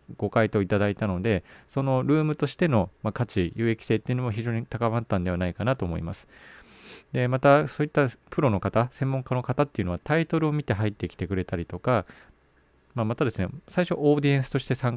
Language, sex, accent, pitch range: Japanese, male, native, 95-135 Hz